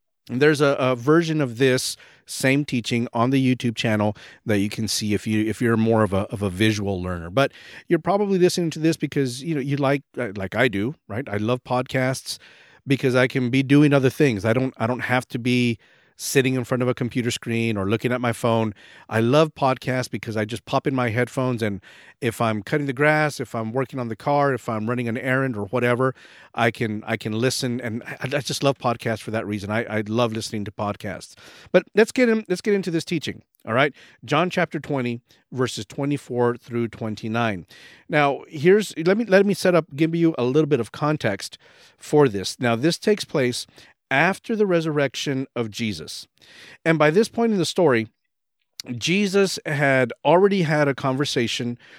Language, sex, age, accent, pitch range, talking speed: English, male, 40-59, American, 115-150 Hz, 205 wpm